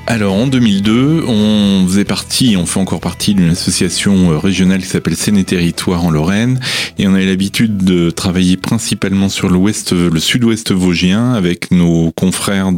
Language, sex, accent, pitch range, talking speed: French, male, French, 90-115 Hz, 165 wpm